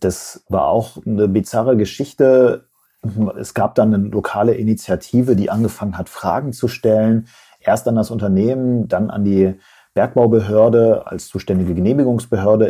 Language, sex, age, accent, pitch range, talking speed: German, male, 40-59, German, 95-115 Hz, 135 wpm